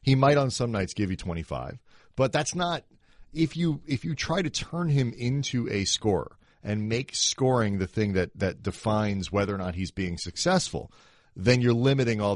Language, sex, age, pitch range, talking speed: English, male, 40-59, 95-130 Hz, 200 wpm